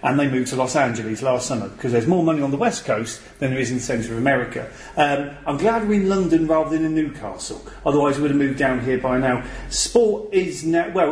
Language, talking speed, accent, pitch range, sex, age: English, 255 wpm, British, 125-150 Hz, male, 40-59